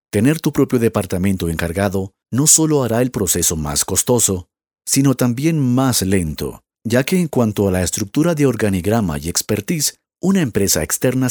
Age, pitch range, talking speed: 50-69, 95-130 Hz, 160 wpm